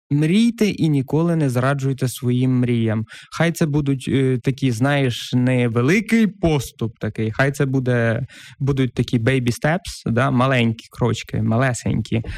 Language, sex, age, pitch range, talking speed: Ukrainian, male, 20-39, 125-170 Hz, 130 wpm